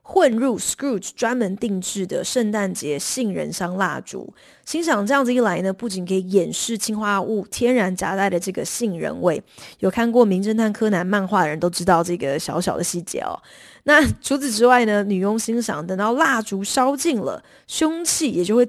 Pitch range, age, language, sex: 195-250 Hz, 20-39, Chinese, female